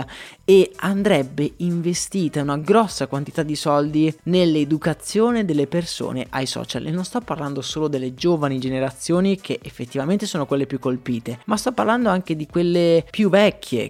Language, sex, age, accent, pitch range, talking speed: Italian, male, 20-39, native, 140-195 Hz, 150 wpm